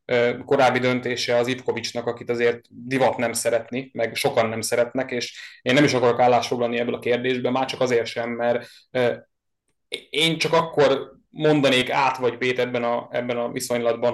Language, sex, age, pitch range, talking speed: Hungarian, male, 20-39, 120-145 Hz, 160 wpm